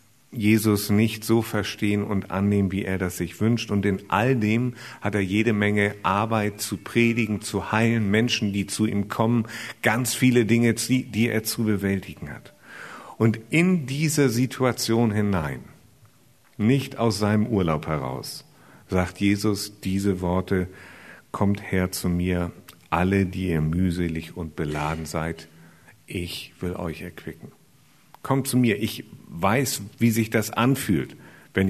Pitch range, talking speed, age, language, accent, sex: 95-115 Hz, 145 wpm, 50-69, German, German, male